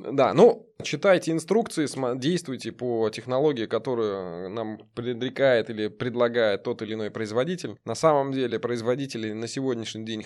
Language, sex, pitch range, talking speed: Russian, male, 110-145 Hz, 135 wpm